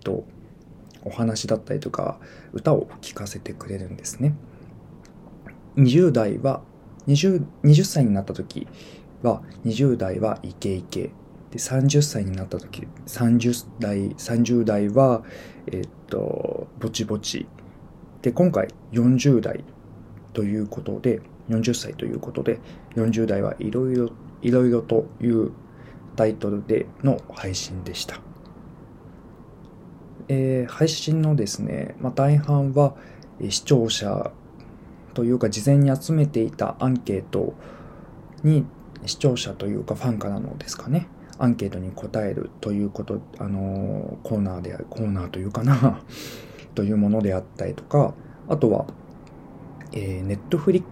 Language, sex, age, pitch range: Japanese, male, 20-39, 100-135 Hz